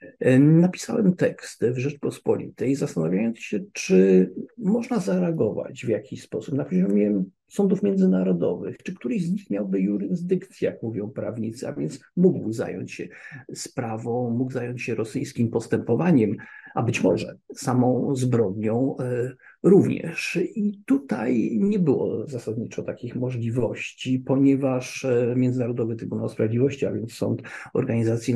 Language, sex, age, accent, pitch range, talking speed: Polish, male, 50-69, native, 110-130 Hz, 120 wpm